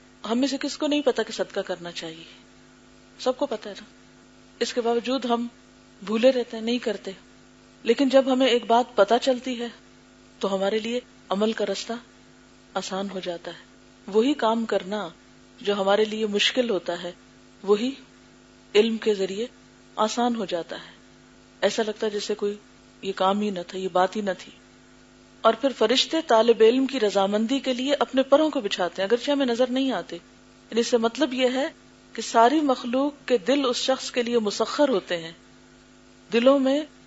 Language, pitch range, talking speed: Urdu, 195-255 Hz, 180 wpm